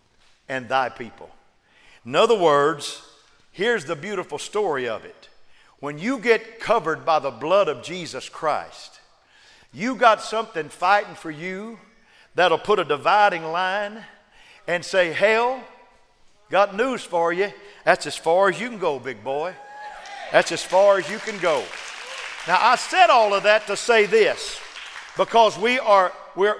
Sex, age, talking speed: male, 50-69, 155 wpm